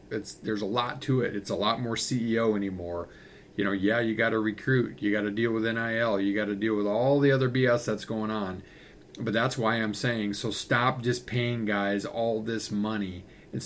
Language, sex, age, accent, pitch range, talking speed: English, male, 40-59, American, 105-130 Hz, 210 wpm